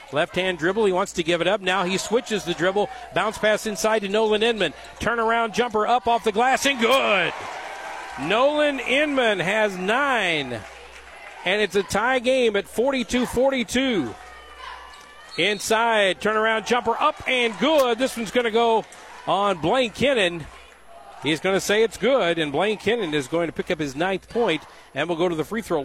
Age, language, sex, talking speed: 50-69, English, male, 175 wpm